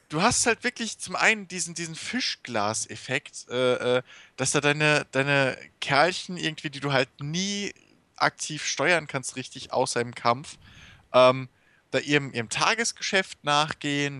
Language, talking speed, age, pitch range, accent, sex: German, 145 wpm, 20-39, 115-155 Hz, German, male